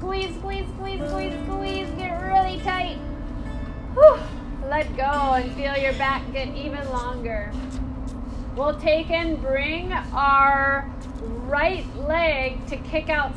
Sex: female